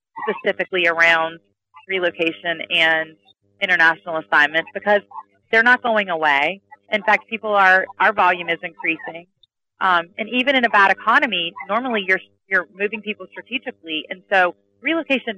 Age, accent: 30-49, American